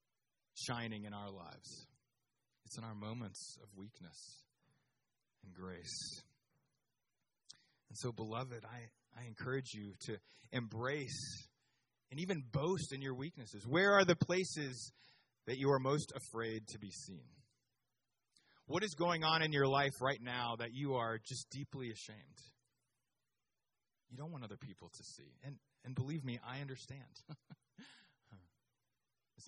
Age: 30-49